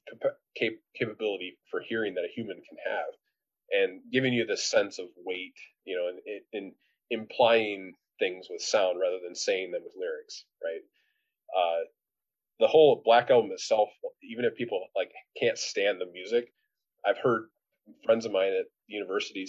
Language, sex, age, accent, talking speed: English, male, 30-49, American, 155 wpm